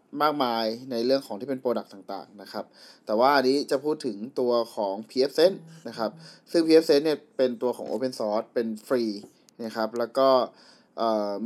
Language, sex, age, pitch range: Thai, male, 20-39, 120-155 Hz